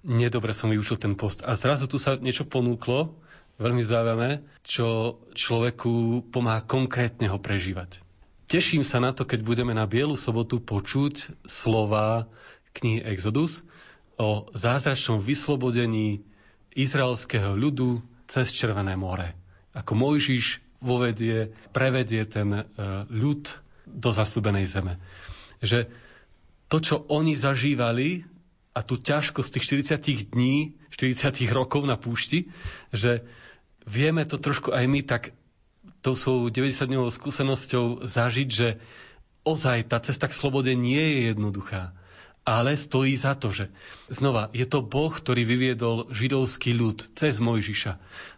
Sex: male